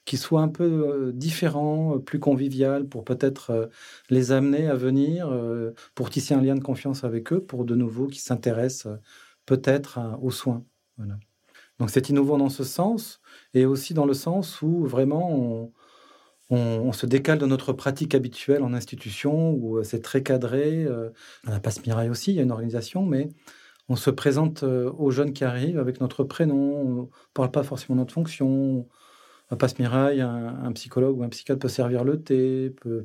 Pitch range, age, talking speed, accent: 120-140 Hz, 40-59, 185 wpm, French